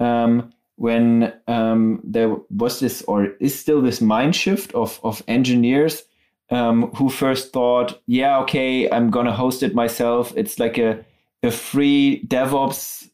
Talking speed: 150 wpm